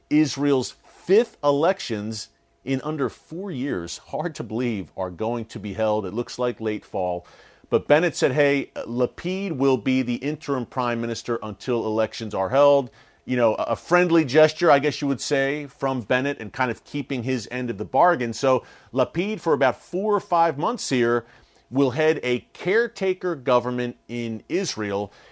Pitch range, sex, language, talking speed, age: 120-150 Hz, male, English, 170 wpm, 40-59